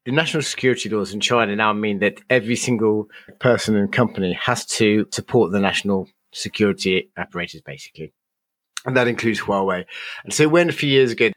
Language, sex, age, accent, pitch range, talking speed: English, male, 30-49, British, 100-125 Hz, 175 wpm